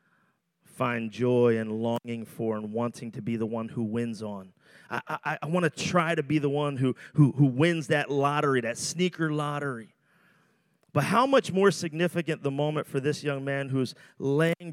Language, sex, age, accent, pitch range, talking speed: English, male, 30-49, American, 120-150 Hz, 185 wpm